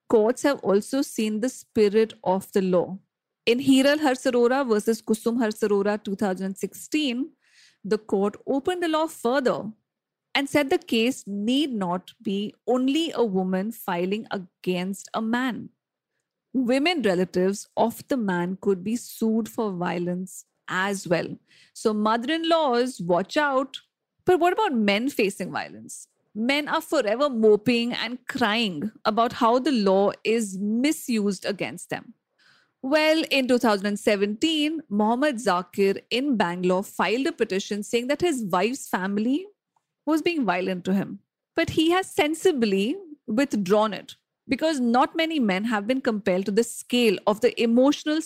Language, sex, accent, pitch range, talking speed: English, female, Indian, 205-270 Hz, 140 wpm